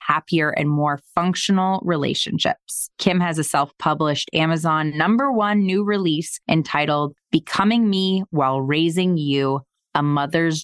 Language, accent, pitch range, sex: English, American, 145-185 Hz, female